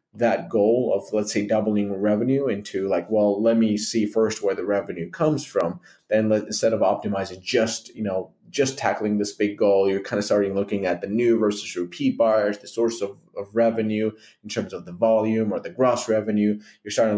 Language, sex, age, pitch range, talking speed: English, male, 30-49, 100-115 Hz, 205 wpm